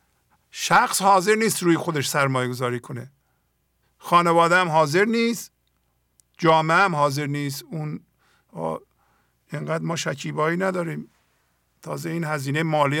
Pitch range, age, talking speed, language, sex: 130-165 Hz, 50-69, 115 wpm, English, male